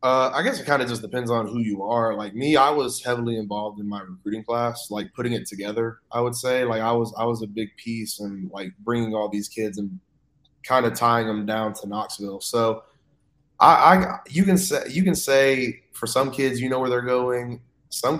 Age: 20-39